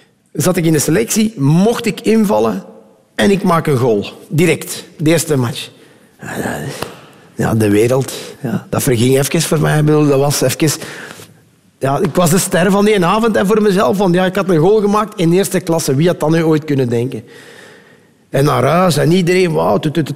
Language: Dutch